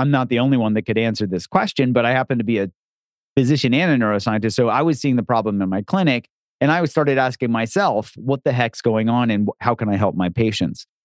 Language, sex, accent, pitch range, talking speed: English, male, American, 105-135 Hz, 250 wpm